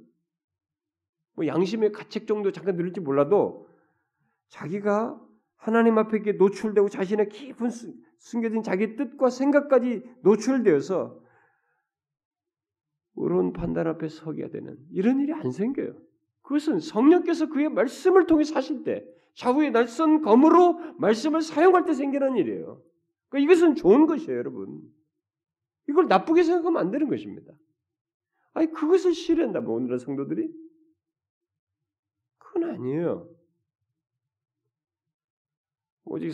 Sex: male